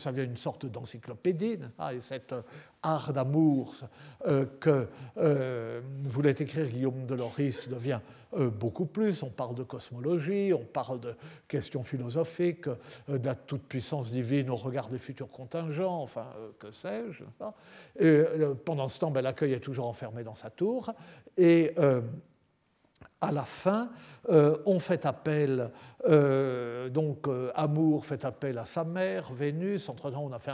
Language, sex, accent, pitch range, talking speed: French, male, French, 125-155 Hz, 160 wpm